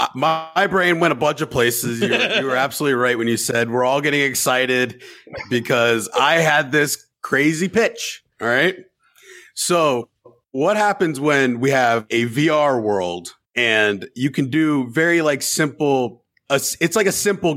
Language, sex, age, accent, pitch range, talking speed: English, male, 30-49, American, 120-145 Hz, 165 wpm